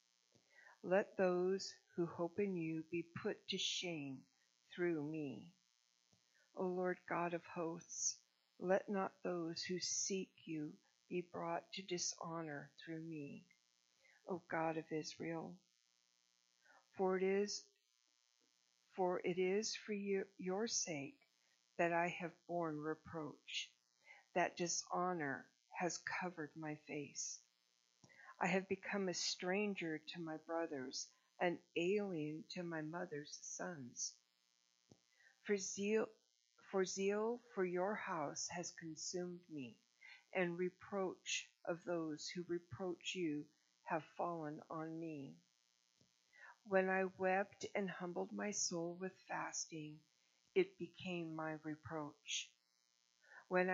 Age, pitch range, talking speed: 60-79, 145-185 Hz, 115 wpm